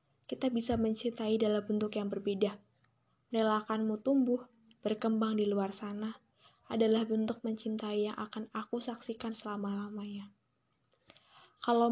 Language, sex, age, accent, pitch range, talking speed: Indonesian, female, 10-29, native, 205-225 Hz, 110 wpm